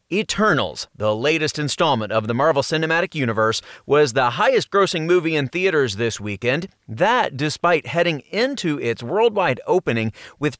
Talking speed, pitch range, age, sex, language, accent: 140 wpm, 120-175 Hz, 30-49, male, English, American